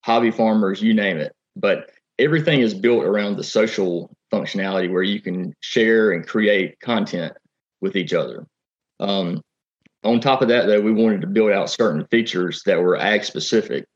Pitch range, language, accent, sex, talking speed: 95-115 Hz, English, American, male, 170 wpm